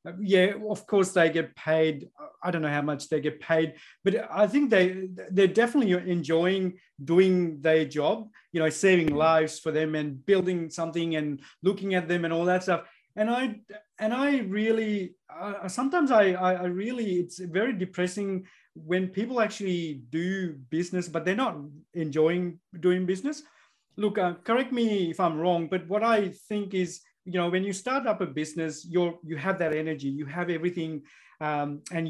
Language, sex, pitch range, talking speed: English, male, 160-195 Hz, 180 wpm